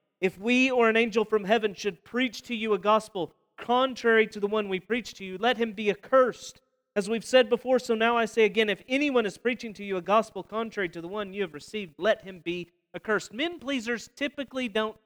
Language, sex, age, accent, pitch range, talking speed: English, male, 40-59, American, 190-245 Hz, 225 wpm